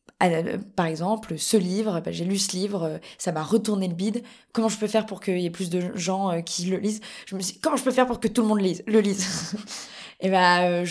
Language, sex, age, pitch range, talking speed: French, female, 20-39, 175-220 Hz, 275 wpm